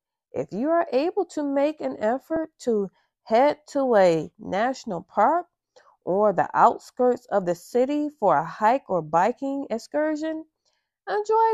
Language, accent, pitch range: English, American, 185-290 Hz